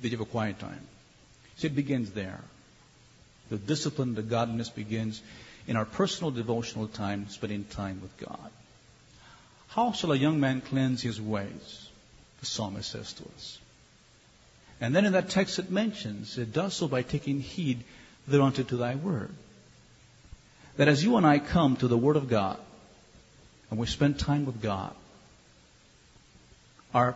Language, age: English, 50-69